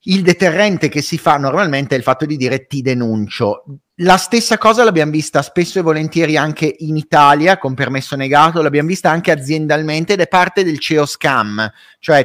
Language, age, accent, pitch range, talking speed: Italian, 30-49, native, 145-185 Hz, 185 wpm